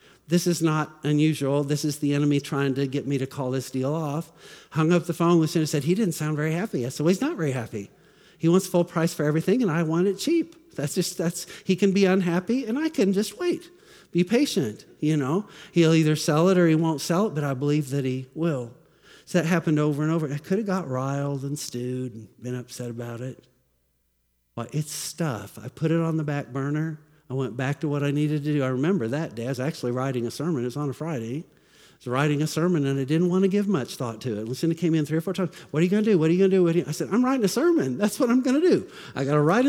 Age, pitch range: 50-69, 135-180 Hz